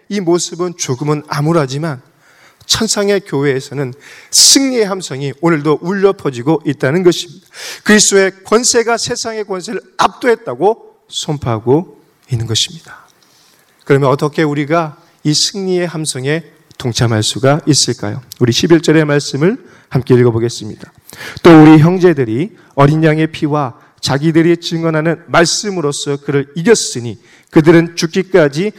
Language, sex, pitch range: Korean, male, 145-200 Hz